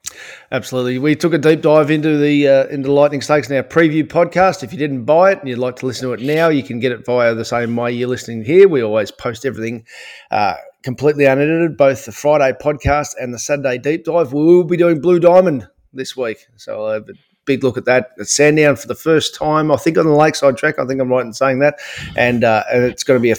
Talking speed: 255 wpm